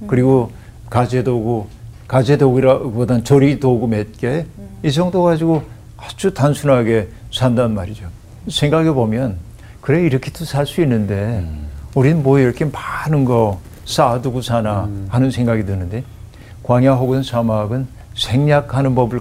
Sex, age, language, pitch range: male, 50-69, Korean, 110-140 Hz